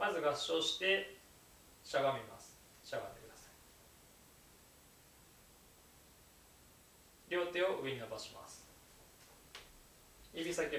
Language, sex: Japanese, male